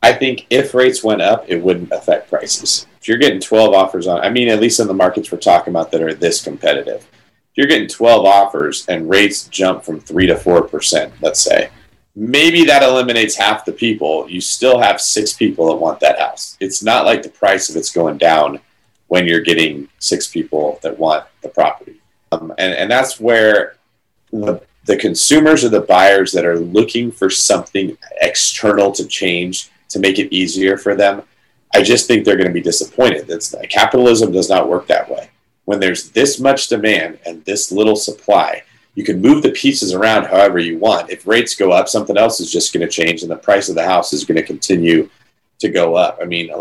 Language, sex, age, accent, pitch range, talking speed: English, male, 40-59, American, 85-120 Hz, 210 wpm